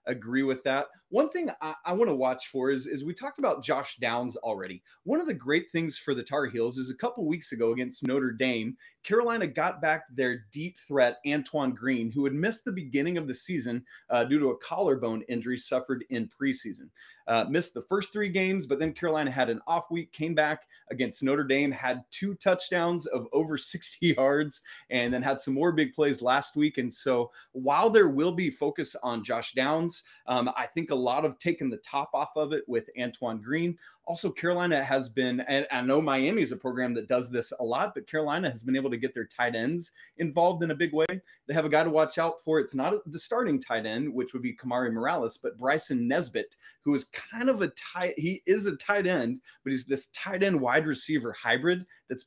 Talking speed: 220 wpm